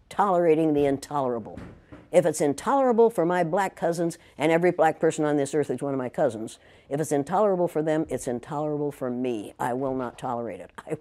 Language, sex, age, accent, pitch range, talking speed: English, female, 60-79, American, 140-195 Hz, 200 wpm